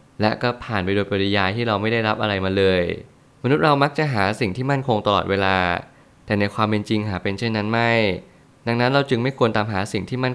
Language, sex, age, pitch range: Thai, male, 20-39, 100-120 Hz